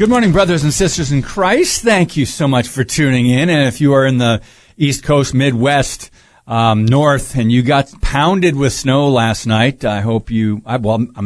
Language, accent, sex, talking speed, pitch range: English, American, male, 210 wpm, 120-155 Hz